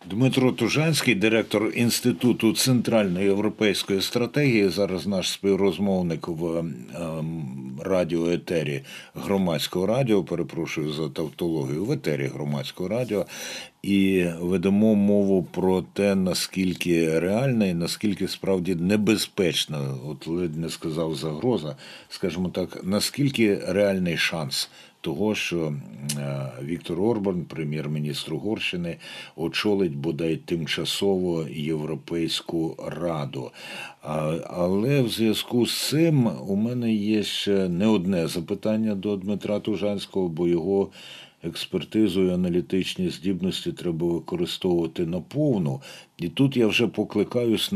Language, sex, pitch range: Ukrainian, male, 85-105 Hz